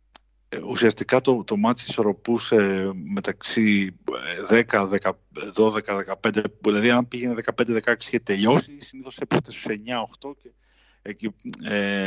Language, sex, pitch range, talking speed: Greek, male, 90-125 Hz, 125 wpm